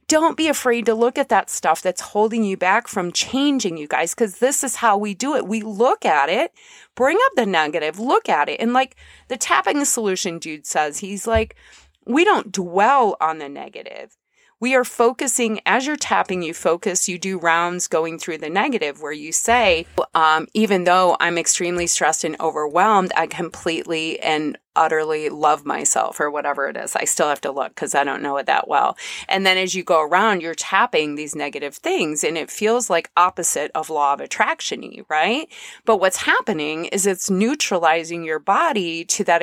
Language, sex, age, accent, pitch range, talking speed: English, female, 30-49, American, 170-245 Hz, 195 wpm